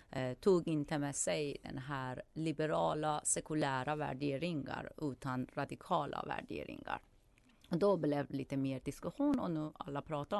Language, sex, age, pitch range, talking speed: Swedish, female, 30-49, 140-180 Hz, 135 wpm